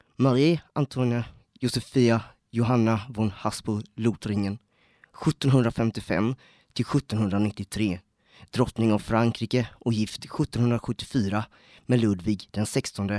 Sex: male